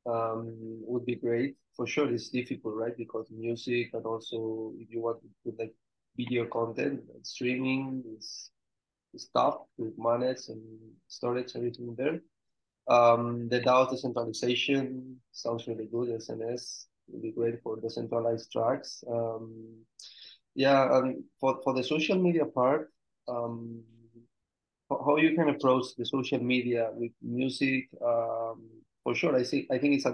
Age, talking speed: 20-39, 150 wpm